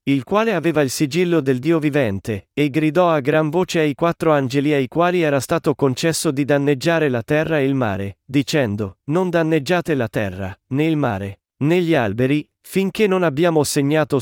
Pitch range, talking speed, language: 130-165 Hz, 180 wpm, Italian